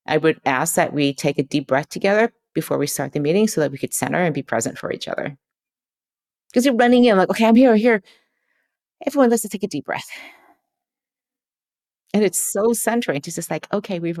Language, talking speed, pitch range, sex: English, 215 wpm, 145-215 Hz, female